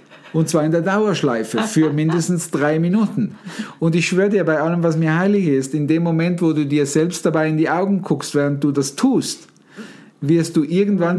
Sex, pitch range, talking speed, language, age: male, 150-185 Hz, 205 wpm, German, 50-69